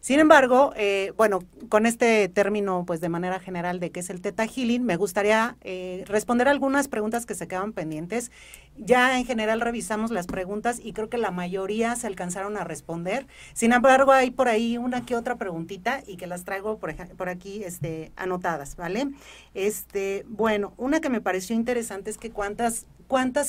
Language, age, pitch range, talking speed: Spanish, 40-59, 185-235 Hz, 185 wpm